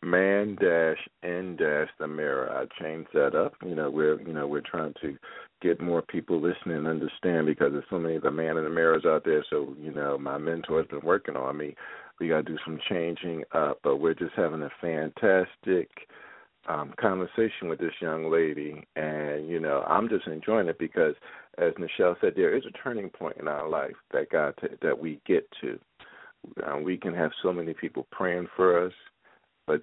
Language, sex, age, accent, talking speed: English, male, 50-69, American, 205 wpm